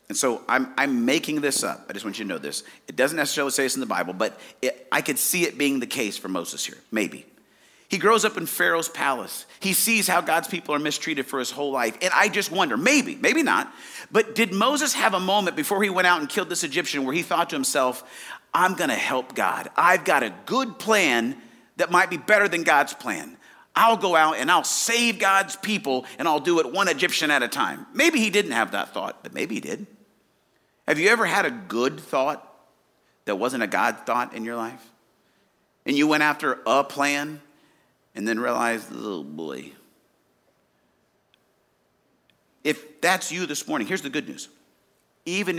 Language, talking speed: English, 205 wpm